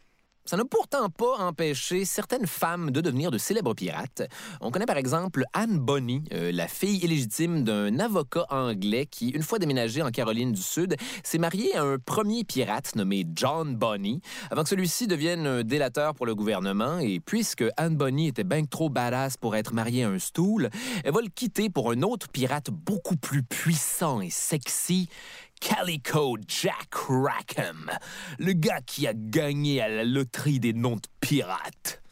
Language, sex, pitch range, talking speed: French, male, 125-195 Hz, 175 wpm